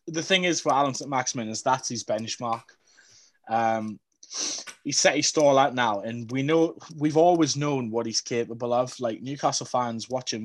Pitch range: 115-140 Hz